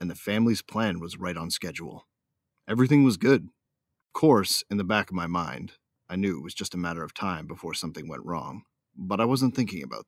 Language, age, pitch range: English, 30-49, 90-120 Hz